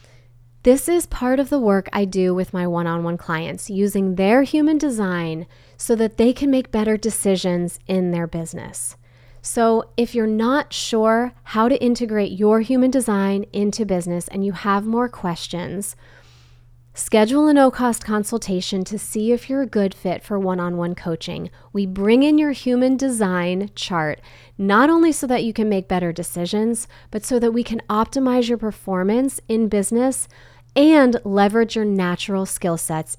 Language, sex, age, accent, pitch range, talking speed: English, female, 20-39, American, 175-235 Hz, 165 wpm